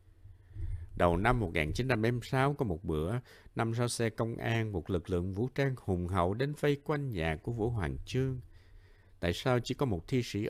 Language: Vietnamese